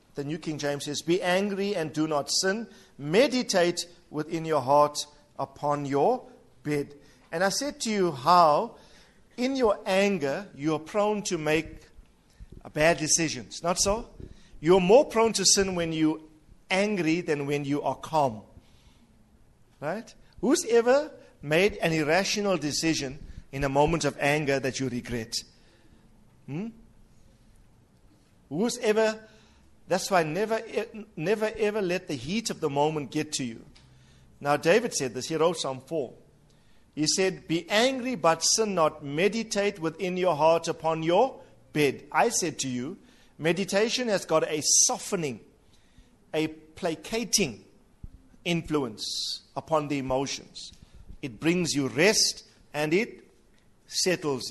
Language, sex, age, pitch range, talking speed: English, male, 50-69, 145-195 Hz, 140 wpm